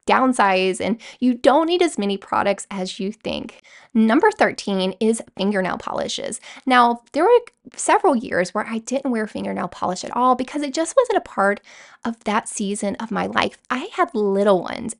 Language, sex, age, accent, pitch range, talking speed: English, female, 10-29, American, 200-270 Hz, 180 wpm